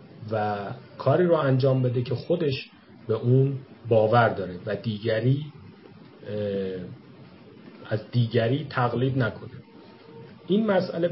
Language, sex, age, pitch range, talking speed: Persian, male, 40-59, 110-140 Hz, 105 wpm